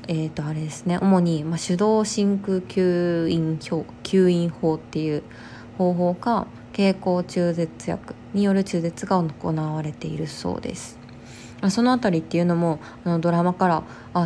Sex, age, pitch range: female, 20-39, 160-190 Hz